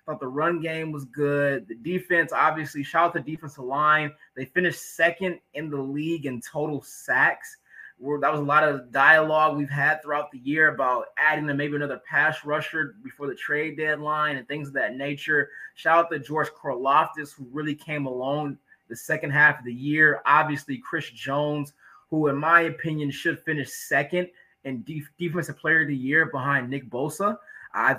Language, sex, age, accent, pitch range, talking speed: English, male, 20-39, American, 140-170 Hz, 185 wpm